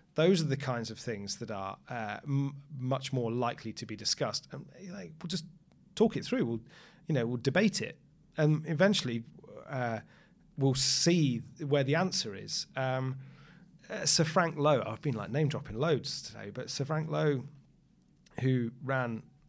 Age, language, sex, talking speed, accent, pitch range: 30-49, English, male, 175 wpm, British, 120-155 Hz